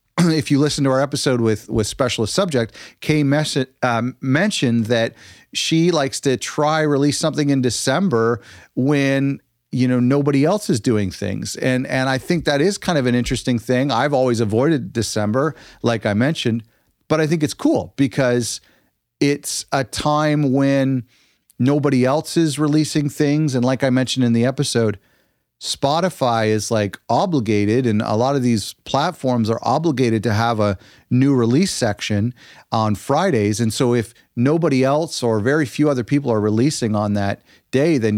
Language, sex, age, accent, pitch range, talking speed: English, male, 40-59, American, 110-145 Hz, 170 wpm